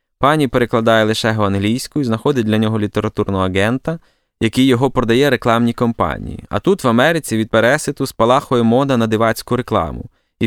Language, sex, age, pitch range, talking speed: Ukrainian, male, 20-39, 105-130 Hz, 160 wpm